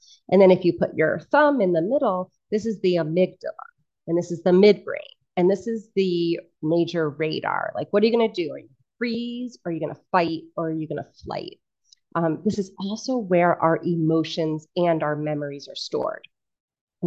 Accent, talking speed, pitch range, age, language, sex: American, 205 wpm, 165-205 Hz, 30-49, English, female